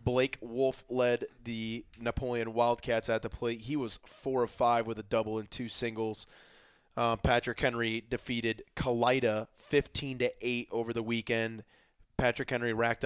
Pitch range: 115-125 Hz